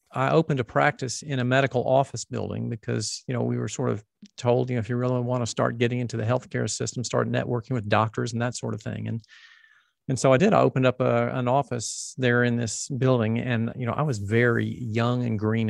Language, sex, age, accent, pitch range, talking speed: English, male, 40-59, American, 115-130 Hz, 240 wpm